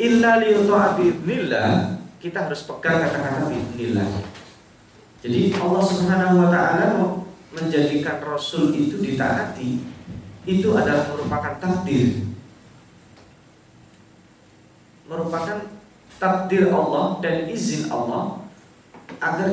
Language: Indonesian